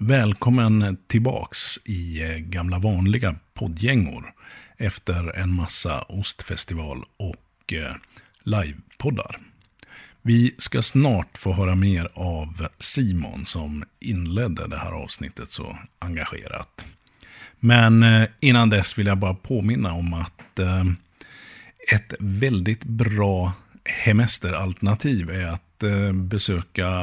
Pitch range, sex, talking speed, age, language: 90-115 Hz, male, 95 wpm, 50-69, Swedish